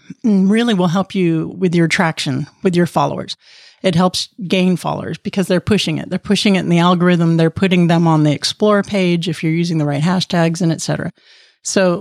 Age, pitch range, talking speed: 40-59, 170-210 Hz, 205 wpm